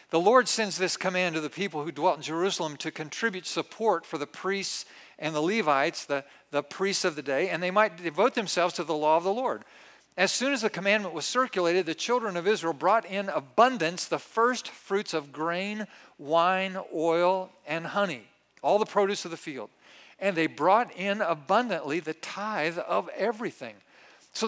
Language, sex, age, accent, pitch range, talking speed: English, male, 50-69, American, 170-210 Hz, 190 wpm